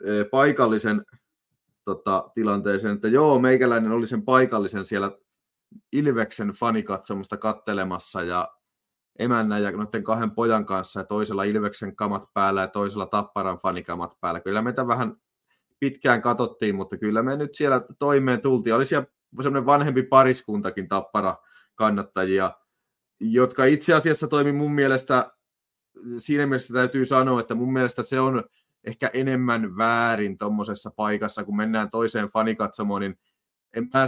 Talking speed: 130 wpm